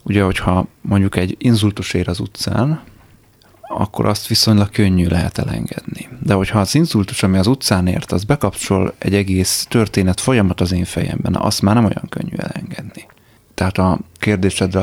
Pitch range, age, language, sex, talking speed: 95-105 Hz, 30-49, Hungarian, male, 160 wpm